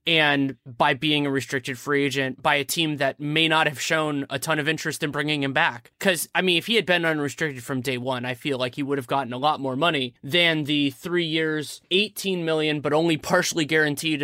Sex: male